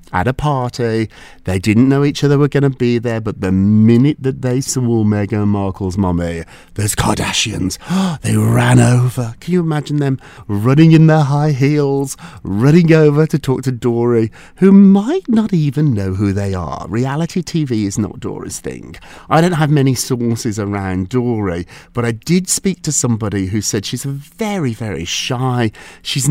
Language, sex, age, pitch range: English, male, 40-59, 105-150 Hz